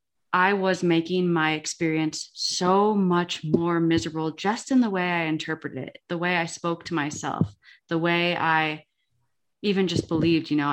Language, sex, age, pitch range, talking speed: English, female, 20-39, 155-190 Hz, 170 wpm